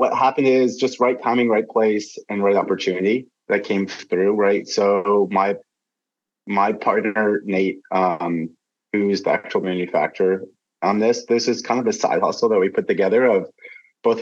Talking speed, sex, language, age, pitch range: 170 wpm, male, English, 30-49, 95-120 Hz